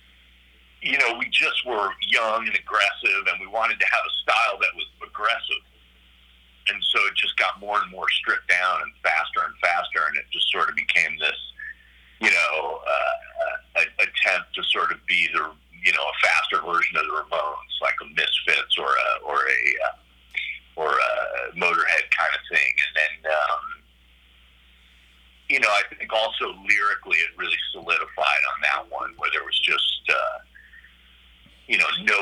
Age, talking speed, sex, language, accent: 50-69, 175 wpm, male, English, American